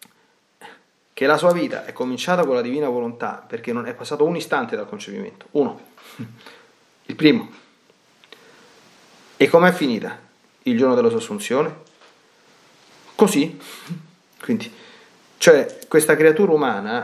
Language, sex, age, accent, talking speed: Italian, male, 40-59, native, 125 wpm